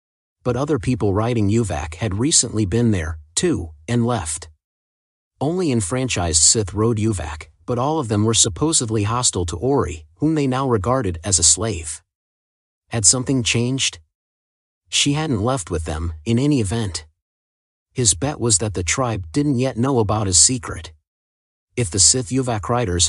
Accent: American